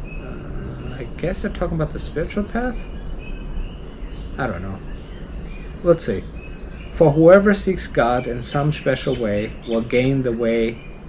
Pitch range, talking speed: 115-150 Hz, 135 wpm